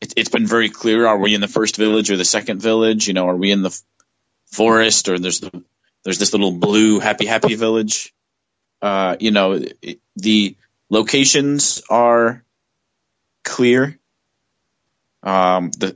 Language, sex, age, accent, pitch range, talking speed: English, male, 30-49, American, 100-115 Hz, 155 wpm